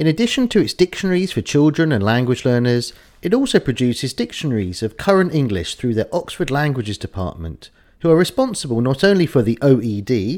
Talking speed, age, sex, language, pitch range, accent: 175 wpm, 40-59, male, English, 110-165 Hz, British